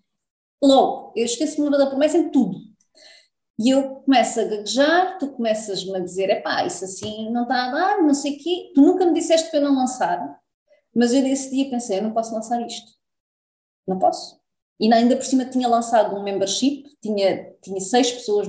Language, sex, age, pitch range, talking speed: Portuguese, female, 20-39, 220-285 Hz, 200 wpm